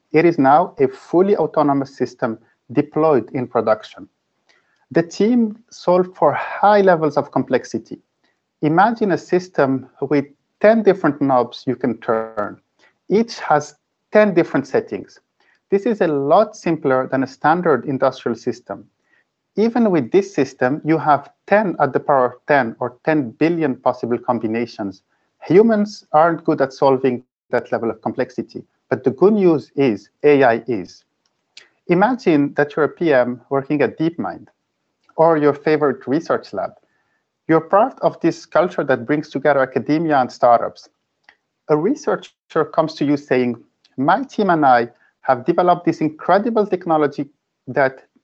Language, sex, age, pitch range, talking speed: English, male, 50-69, 130-180 Hz, 145 wpm